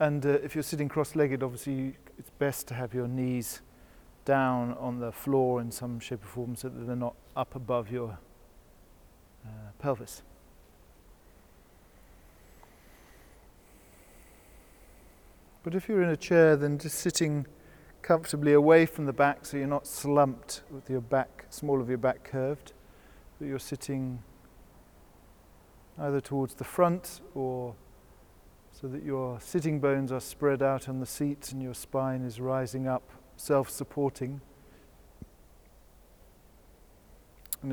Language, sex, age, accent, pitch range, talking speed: English, male, 40-59, British, 125-145 Hz, 135 wpm